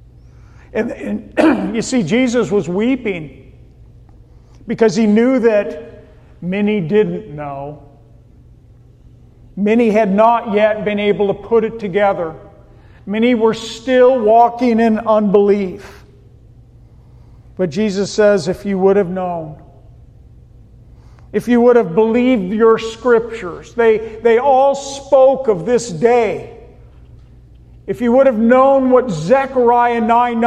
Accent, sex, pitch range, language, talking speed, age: American, male, 165-230 Hz, English, 115 wpm, 50-69